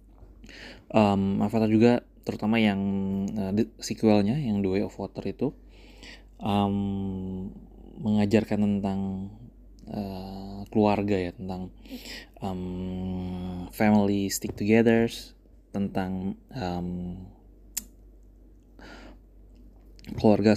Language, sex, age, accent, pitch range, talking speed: Indonesian, male, 20-39, native, 95-105 Hz, 80 wpm